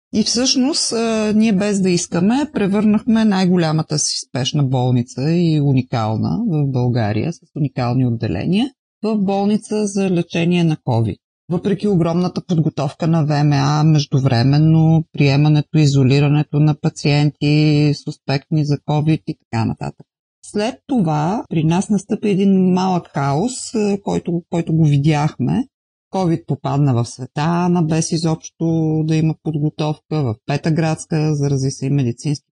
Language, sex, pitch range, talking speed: Bulgarian, female, 140-180 Hz, 125 wpm